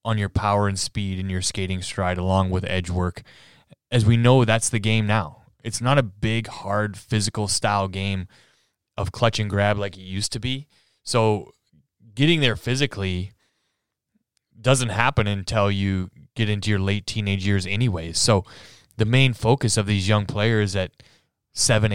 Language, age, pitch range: English, 20-39, 100-120 Hz